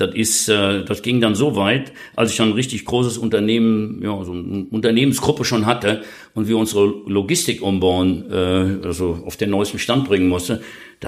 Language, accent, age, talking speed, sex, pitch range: German, German, 60-79, 175 wpm, male, 95-115 Hz